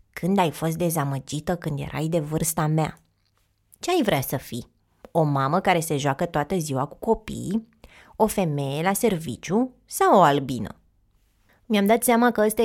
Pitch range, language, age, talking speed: 150-205 Hz, Romanian, 20-39, 165 wpm